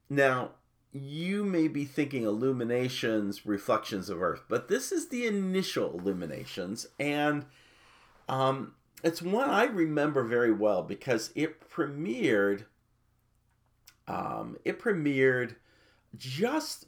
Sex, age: male, 50-69